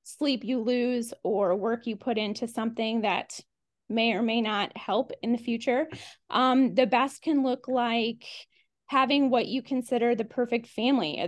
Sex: female